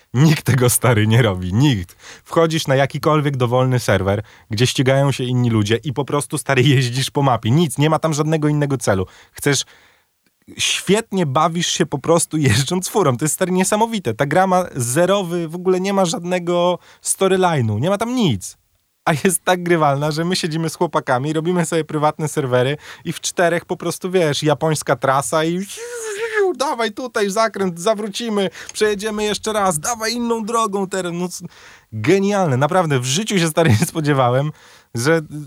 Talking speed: 165 wpm